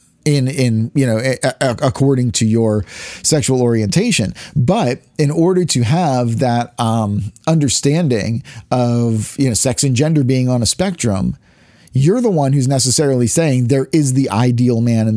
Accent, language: American, English